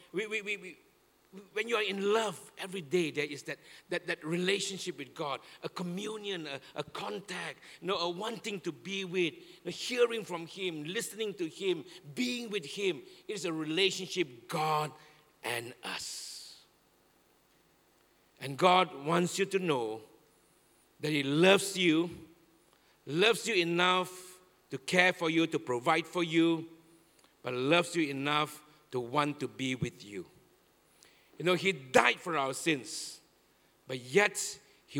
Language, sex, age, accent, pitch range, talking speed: English, male, 50-69, Malaysian, 150-195 Hz, 155 wpm